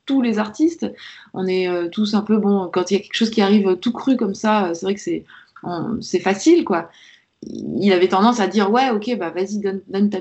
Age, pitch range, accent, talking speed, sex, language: 20-39, 190-280 Hz, French, 240 wpm, female, French